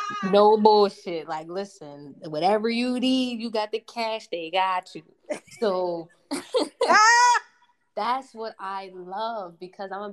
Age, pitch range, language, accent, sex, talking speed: 20-39, 165-200 Hz, English, American, female, 130 wpm